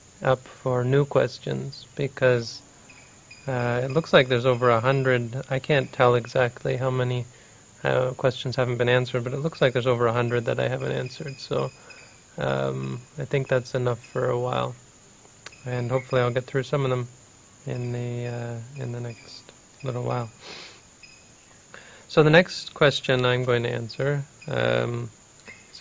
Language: English